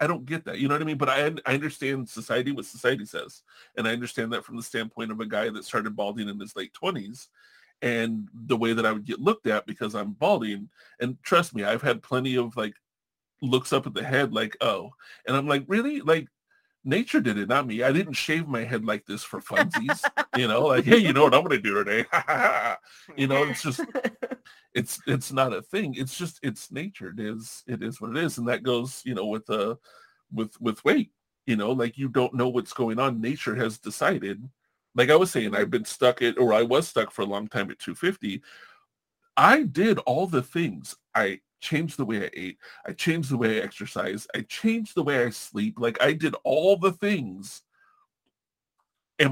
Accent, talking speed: American, 220 wpm